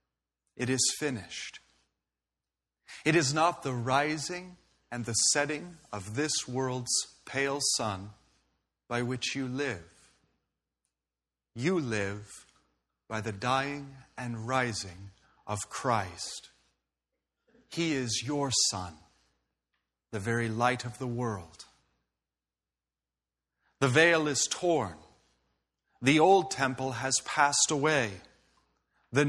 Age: 40-59